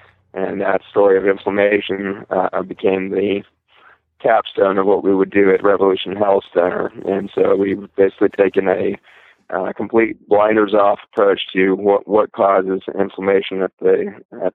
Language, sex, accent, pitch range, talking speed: English, male, American, 95-105 Hz, 150 wpm